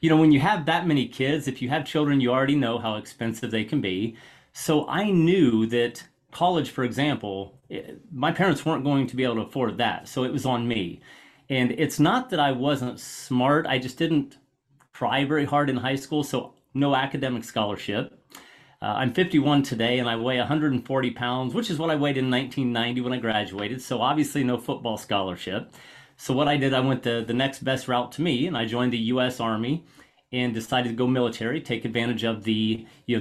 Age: 30-49